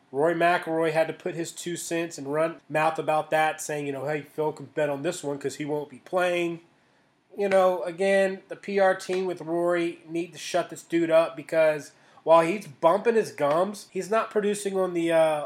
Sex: male